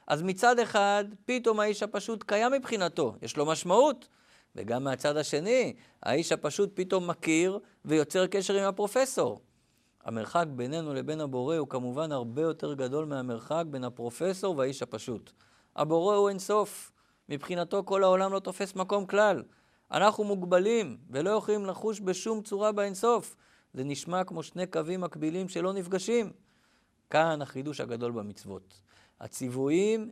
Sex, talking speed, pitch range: male, 135 wpm, 155-210 Hz